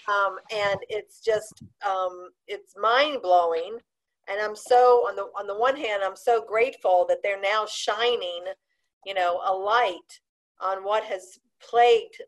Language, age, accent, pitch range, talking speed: English, 50-69, American, 190-280 Hz, 155 wpm